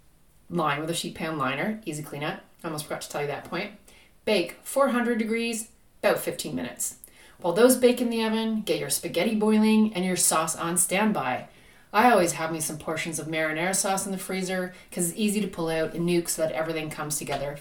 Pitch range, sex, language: 165-225 Hz, female, English